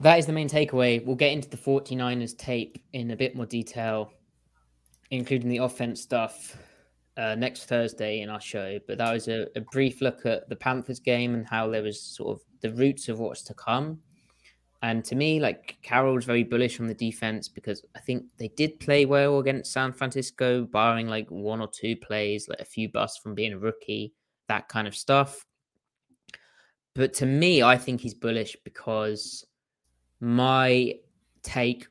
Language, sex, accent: English, male, British